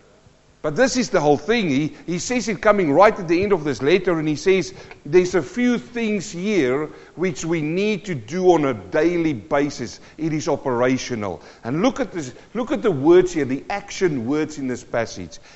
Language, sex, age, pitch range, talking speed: English, male, 50-69, 155-215 Hz, 205 wpm